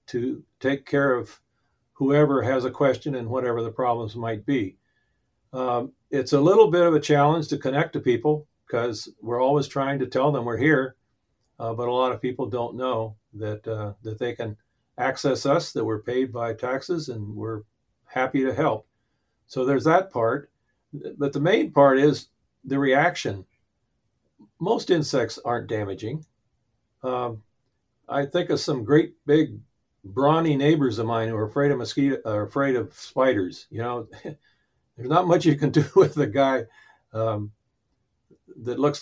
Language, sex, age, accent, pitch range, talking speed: English, male, 50-69, American, 115-145 Hz, 170 wpm